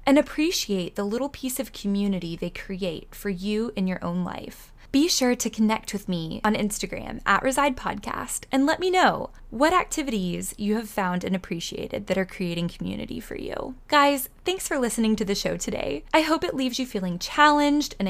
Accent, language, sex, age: American, English, female, 20-39